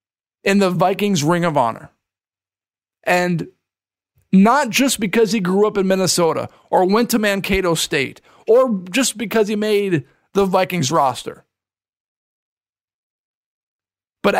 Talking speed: 120 wpm